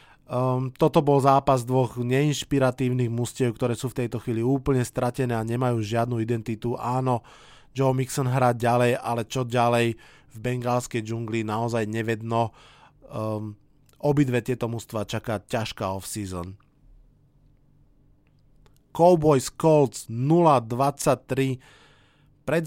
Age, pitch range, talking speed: 20-39, 120-140 Hz, 110 wpm